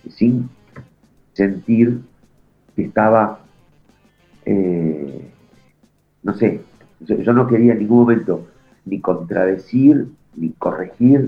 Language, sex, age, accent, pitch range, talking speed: Spanish, male, 50-69, Argentinian, 100-120 Hz, 90 wpm